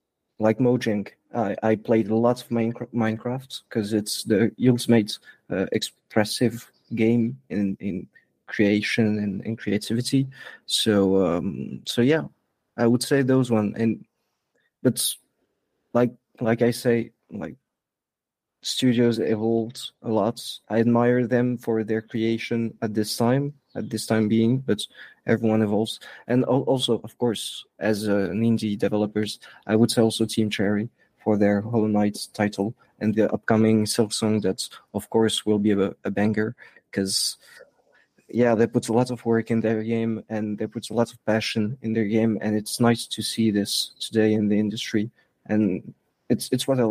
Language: English